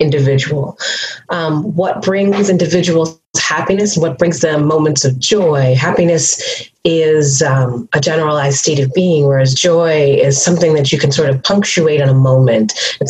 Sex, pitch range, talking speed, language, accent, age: female, 150-195 Hz, 155 wpm, English, American, 30-49